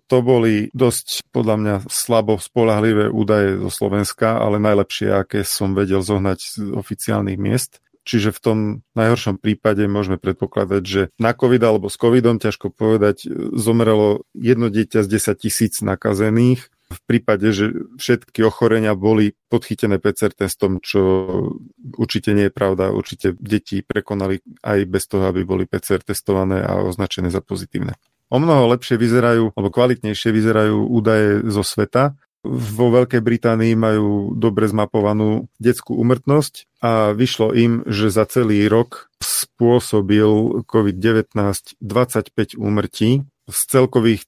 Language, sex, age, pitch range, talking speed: Slovak, male, 40-59, 105-115 Hz, 135 wpm